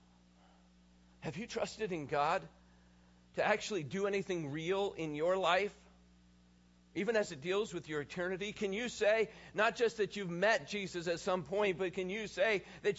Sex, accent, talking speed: male, American, 170 wpm